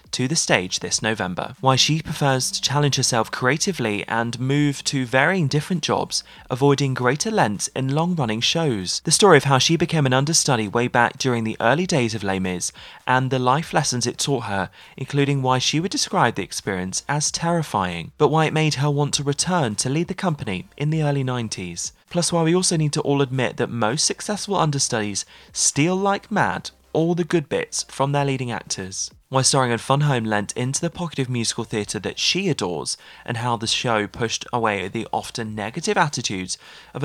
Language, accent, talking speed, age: English, British, 200 wpm, 20-39